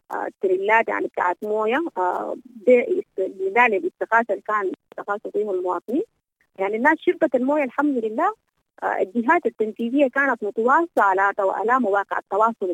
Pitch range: 200-285 Hz